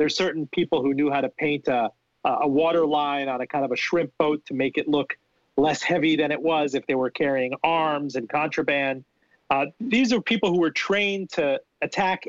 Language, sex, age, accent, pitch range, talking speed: English, male, 40-59, American, 140-180 Hz, 215 wpm